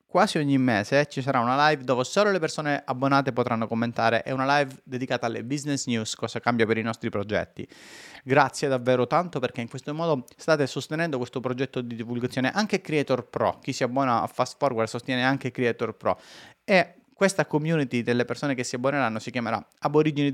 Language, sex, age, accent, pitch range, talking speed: Italian, male, 30-49, native, 120-140 Hz, 190 wpm